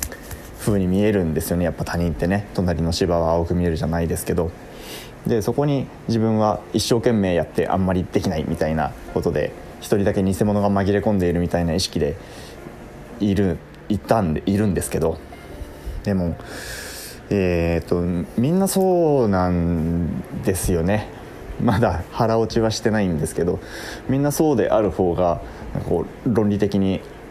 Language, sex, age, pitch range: Japanese, male, 20-39, 85-110 Hz